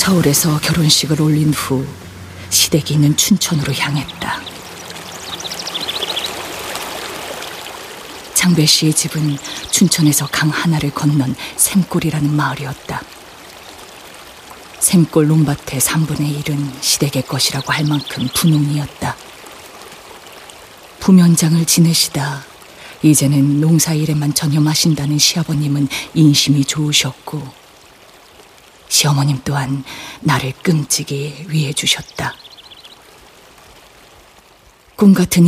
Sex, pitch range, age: female, 140-160 Hz, 40-59